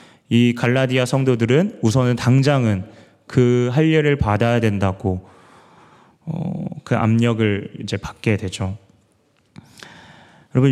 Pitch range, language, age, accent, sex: 110-155 Hz, Korean, 30-49, native, male